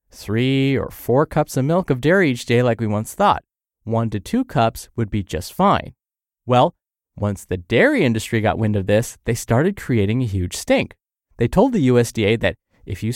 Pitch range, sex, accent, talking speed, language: 115-165 Hz, male, American, 200 wpm, English